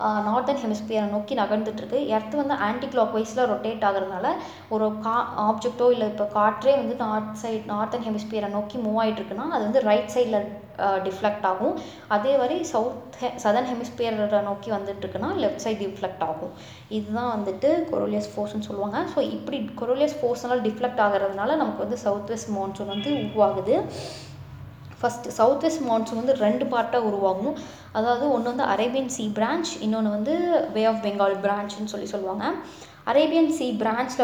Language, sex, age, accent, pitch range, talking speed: Tamil, female, 20-39, native, 210-250 Hz, 150 wpm